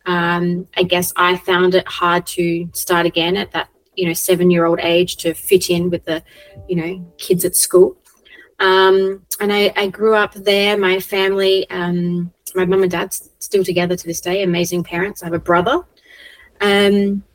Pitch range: 175-195 Hz